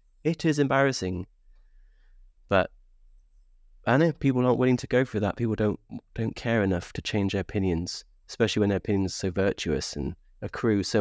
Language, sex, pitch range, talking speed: English, male, 90-110 Hz, 170 wpm